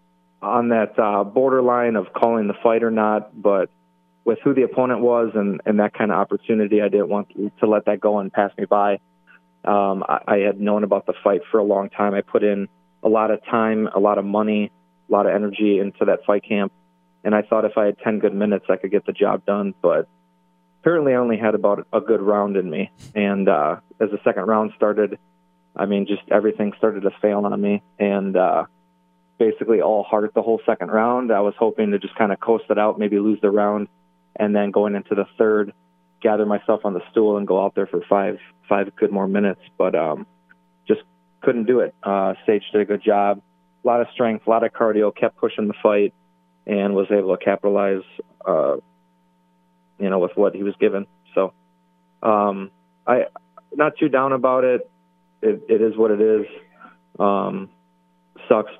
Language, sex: English, male